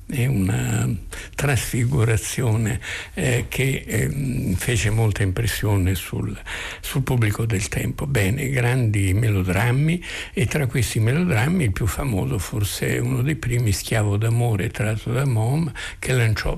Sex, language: male, Italian